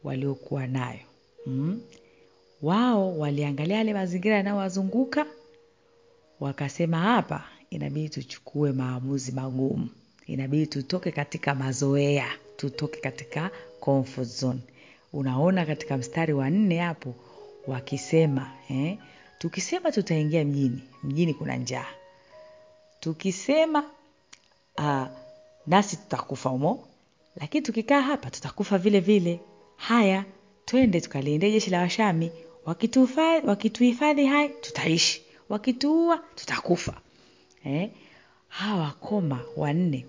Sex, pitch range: female, 140-225 Hz